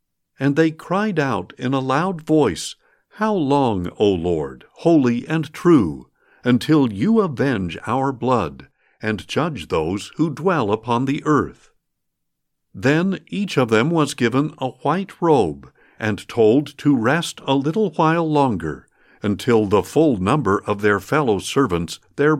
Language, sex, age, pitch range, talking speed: English, male, 60-79, 110-160 Hz, 145 wpm